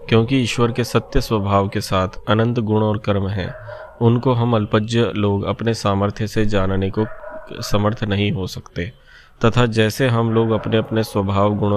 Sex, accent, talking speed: male, native, 170 wpm